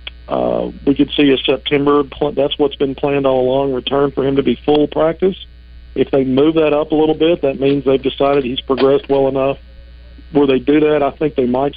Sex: male